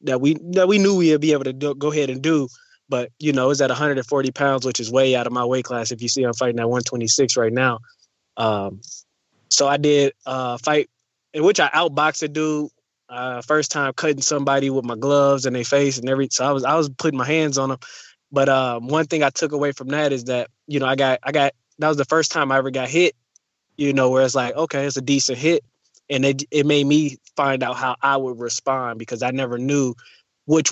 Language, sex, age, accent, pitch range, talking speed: English, male, 20-39, American, 125-145 Hz, 245 wpm